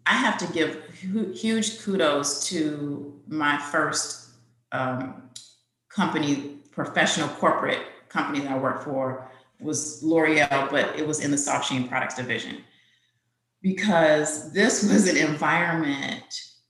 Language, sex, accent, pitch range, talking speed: English, female, American, 135-185 Hz, 120 wpm